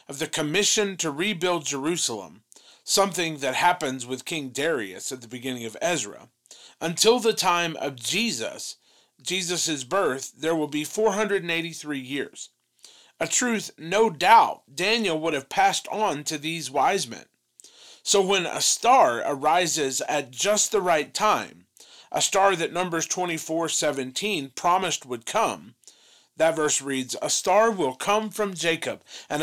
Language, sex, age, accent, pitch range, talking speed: English, male, 40-59, American, 145-200 Hz, 145 wpm